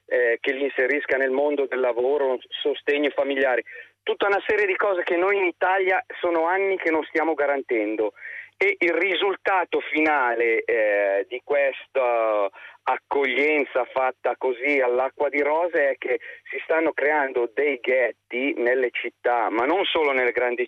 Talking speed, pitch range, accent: 150 wpm, 135-200 Hz, native